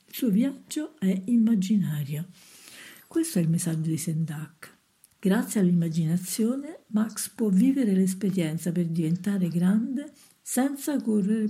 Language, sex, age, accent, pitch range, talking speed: Italian, female, 50-69, native, 175-220 Hz, 110 wpm